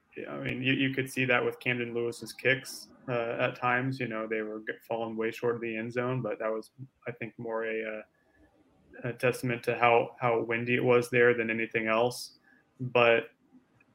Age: 20-39